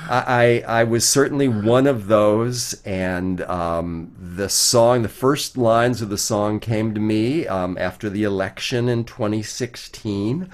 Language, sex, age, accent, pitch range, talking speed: English, male, 50-69, American, 105-135 Hz, 150 wpm